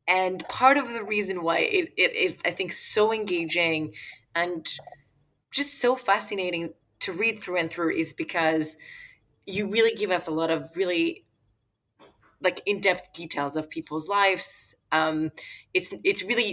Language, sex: English, female